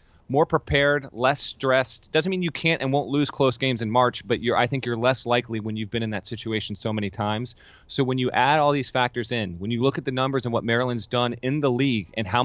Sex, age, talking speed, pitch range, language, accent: male, 30-49, 255 wpm, 110-130 Hz, English, American